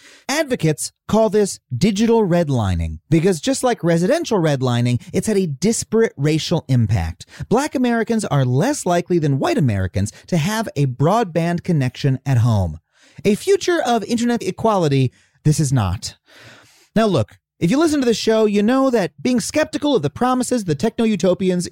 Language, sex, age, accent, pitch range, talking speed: English, male, 30-49, American, 145-230 Hz, 160 wpm